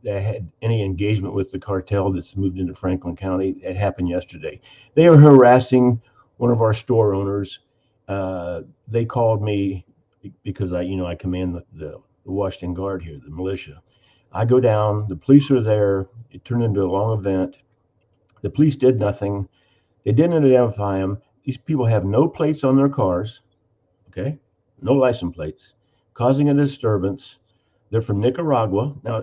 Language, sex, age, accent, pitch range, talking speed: English, male, 50-69, American, 95-130 Hz, 165 wpm